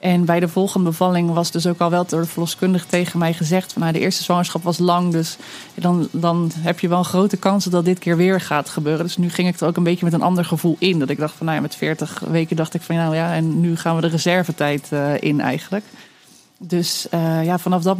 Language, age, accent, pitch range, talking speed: Dutch, 20-39, Dutch, 170-200 Hz, 265 wpm